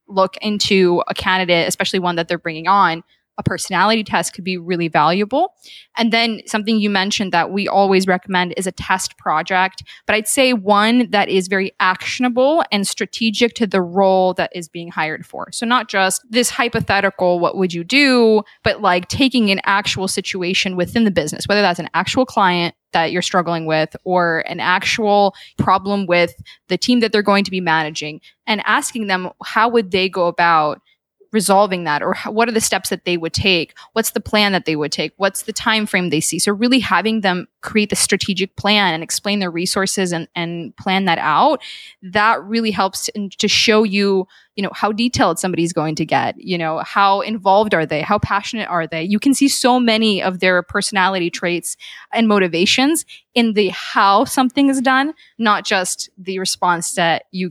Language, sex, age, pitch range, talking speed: English, female, 10-29, 180-215 Hz, 190 wpm